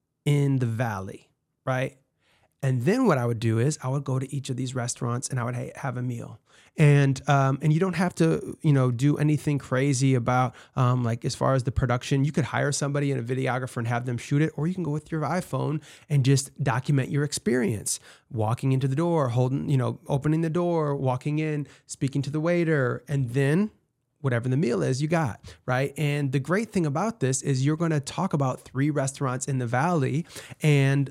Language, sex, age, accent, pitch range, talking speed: English, male, 30-49, American, 125-150 Hz, 215 wpm